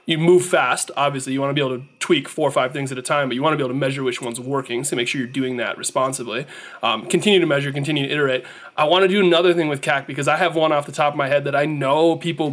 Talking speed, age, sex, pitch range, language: 310 wpm, 20-39, male, 140-180 Hz, English